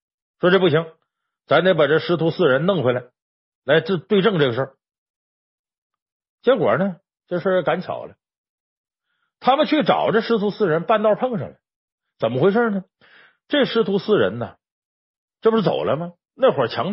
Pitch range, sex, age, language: 165-235 Hz, male, 50-69, Chinese